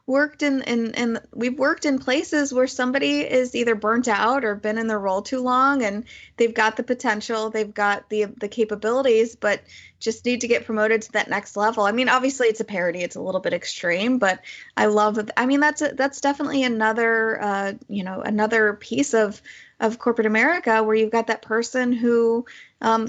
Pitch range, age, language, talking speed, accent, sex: 205-240 Hz, 20-39, English, 205 wpm, American, female